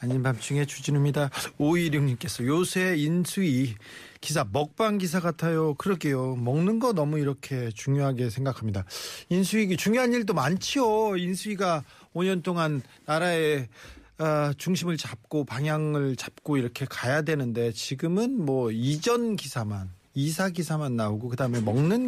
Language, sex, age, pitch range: Korean, male, 40-59, 130-180 Hz